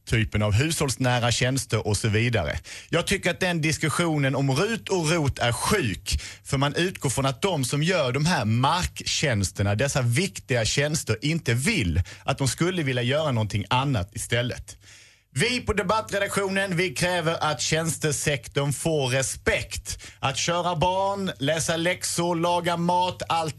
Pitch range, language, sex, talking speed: 115-165 Hz, Swedish, male, 150 wpm